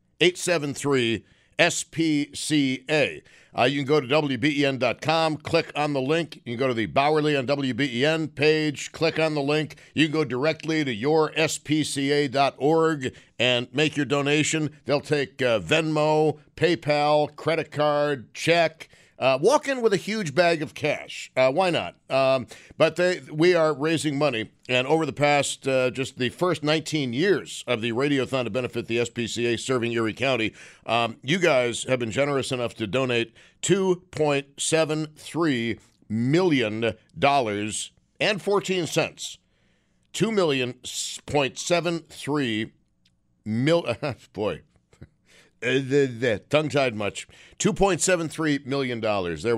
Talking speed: 125 wpm